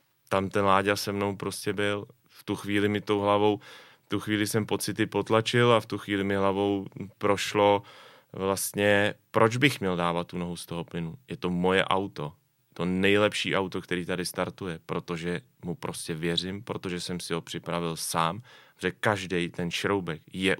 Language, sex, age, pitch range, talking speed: Czech, male, 30-49, 90-105 Hz, 180 wpm